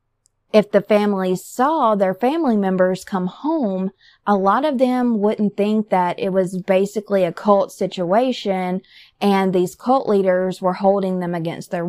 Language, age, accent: English, 20-39, American